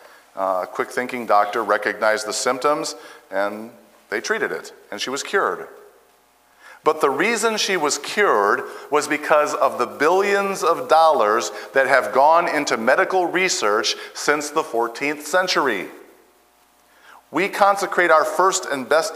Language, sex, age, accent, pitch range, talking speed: English, male, 50-69, American, 125-185 Hz, 140 wpm